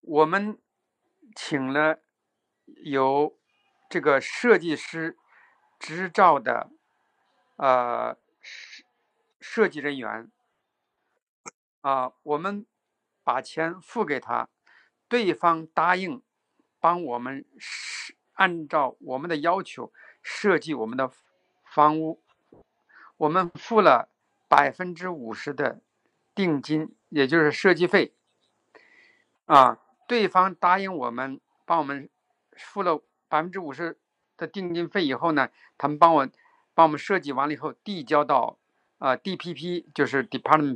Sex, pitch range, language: male, 150-205 Hz, Chinese